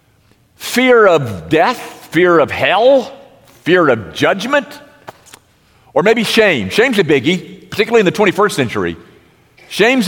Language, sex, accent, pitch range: English, male, American, 120-170 Hz